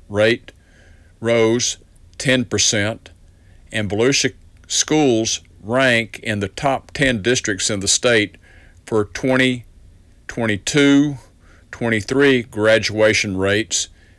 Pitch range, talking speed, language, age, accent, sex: 95-120 Hz, 90 wpm, English, 50-69, American, male